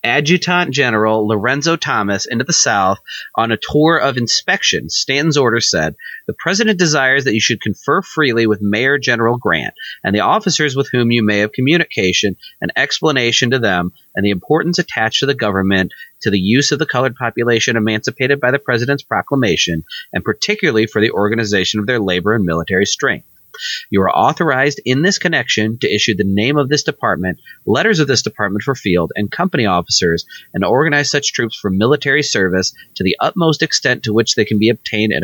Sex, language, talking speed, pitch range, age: male, English, 185 wpm, 105-145 Hz, 30-49